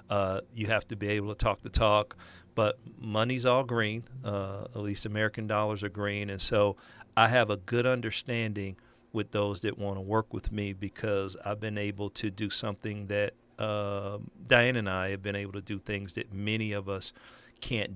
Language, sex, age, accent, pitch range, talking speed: English, male, 50-69, American, 100-110 Hz, 195 wpm